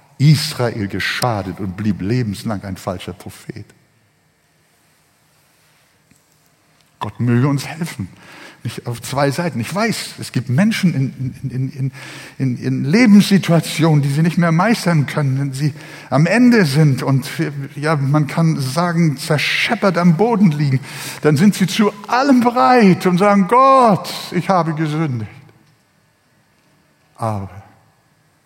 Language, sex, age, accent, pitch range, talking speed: German, male, 60-79, German, 130-185 Hz, 120 wpm